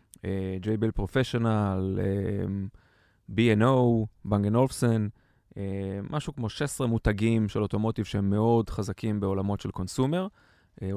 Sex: male